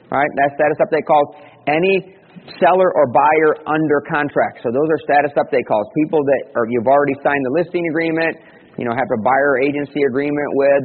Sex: male